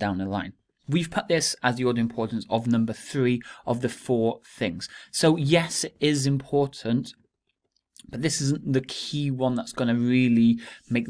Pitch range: 115-145 Hz